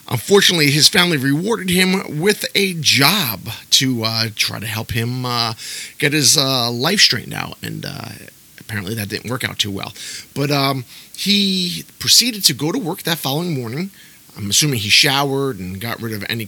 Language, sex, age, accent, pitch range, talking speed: English, male, 30-49, American, 115-165 Hz, 180 wpm